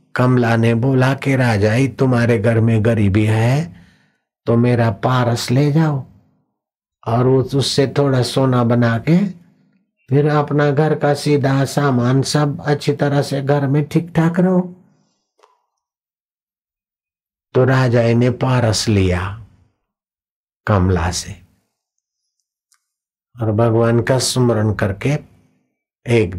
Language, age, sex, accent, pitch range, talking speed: Hindi, 60-79, male, native, 115-145 Hz, 115 wpm